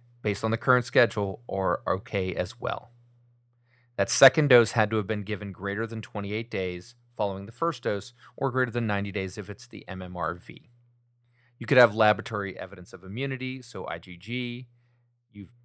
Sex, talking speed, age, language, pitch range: male, 170 wpm, 30-49, English, 100-120 Hz